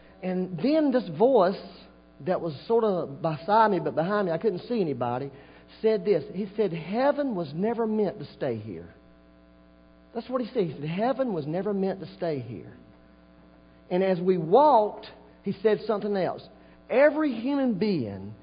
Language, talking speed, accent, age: English, 170 wpm, American, 50-69